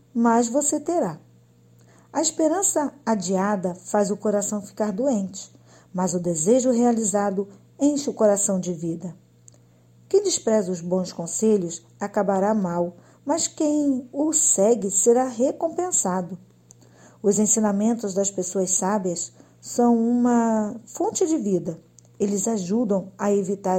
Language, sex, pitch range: Portuguese, female, 175-235 Hz